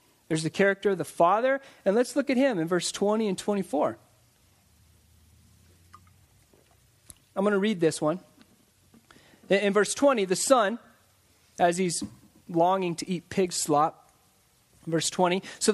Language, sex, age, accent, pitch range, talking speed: English, male, 30-49, American, 165-225 Hz, 140 wpm